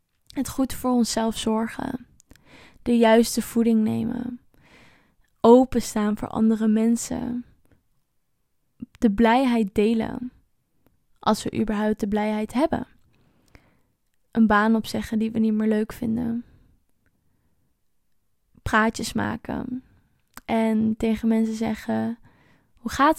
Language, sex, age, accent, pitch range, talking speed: Dutch, female, 20-39, Dutch, 220-240 Hz, 100 wpm